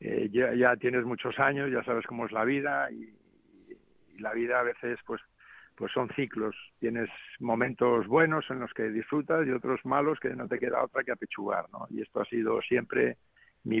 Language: Spanish